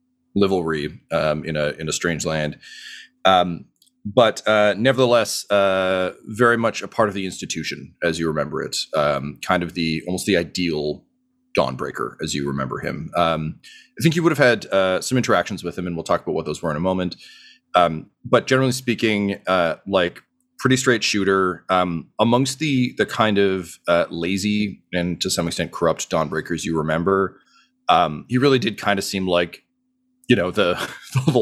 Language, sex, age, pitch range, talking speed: English, male, 30-49, 85-125 Hz, 180 wpm